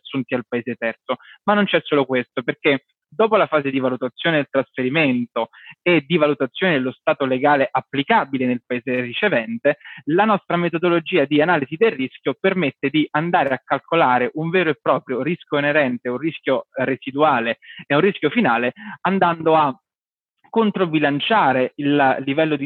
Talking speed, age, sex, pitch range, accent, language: 155 wpm, 20-39, male, 130-165 Hz, native, Italian